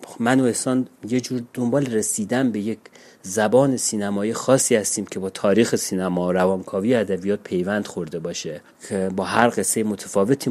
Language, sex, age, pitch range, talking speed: Persian, male, 30-49, 100-120 Hz, 150 wpm